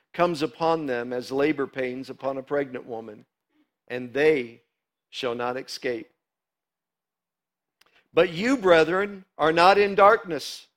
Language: English